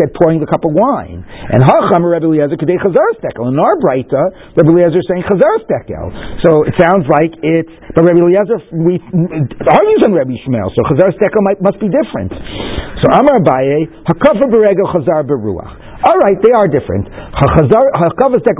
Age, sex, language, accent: 50-69, male, English, American